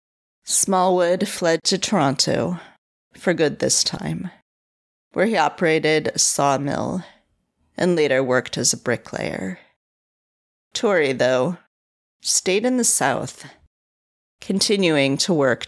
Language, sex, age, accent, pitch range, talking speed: English, female, 30-49, American, 125-180 Hz, 105 wpm